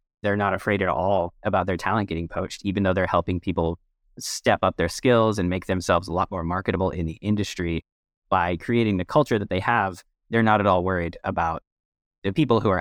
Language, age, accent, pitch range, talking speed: English, 20-39, American, 90-100 Hz, 215 wpm